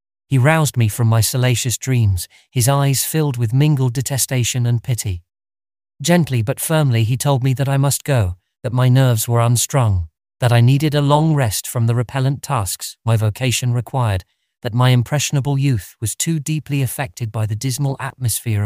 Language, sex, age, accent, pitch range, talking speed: English, male, 40-59, British, 110-140 Hz, 175 wpm